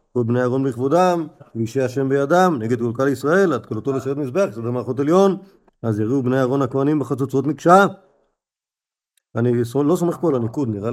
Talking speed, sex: 165 wpm, male